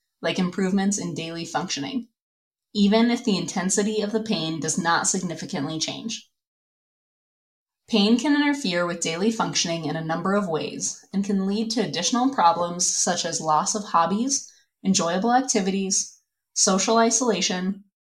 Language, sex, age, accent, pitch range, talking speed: English, female, 20-39, American, 175-225 Hz, 140 wpm